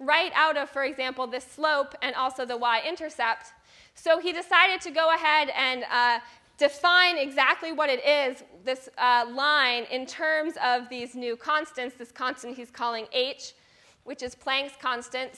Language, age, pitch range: English, 20-39, 245-295 Hz